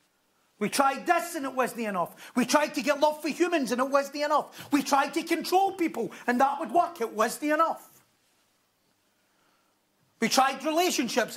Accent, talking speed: British, 190 wpm